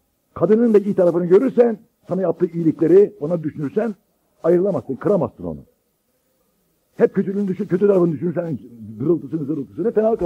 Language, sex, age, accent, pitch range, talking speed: Turkish, male, 60-79, native, 155-200 Hz, 135 wpm